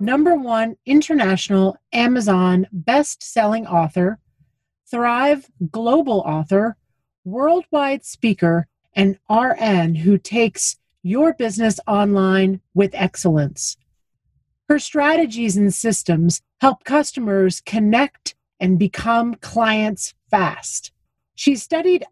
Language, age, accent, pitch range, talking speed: English, 40-59, American, 180-250 Hz, 90 wpm